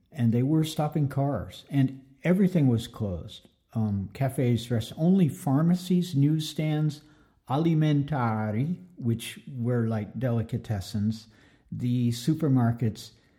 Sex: male